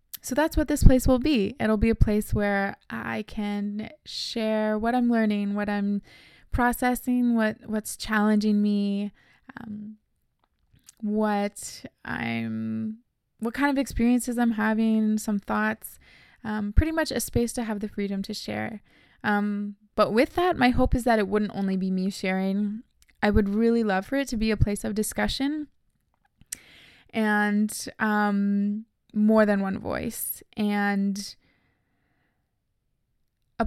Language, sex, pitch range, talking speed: English, female, 200-230 Hz, 145 wpm